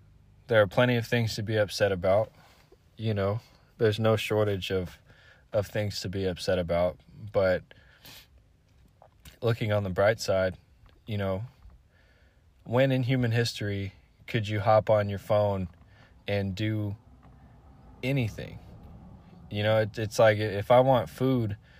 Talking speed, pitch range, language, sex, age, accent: 140 wpm, 90-115 Hz, English, male, 20-39, American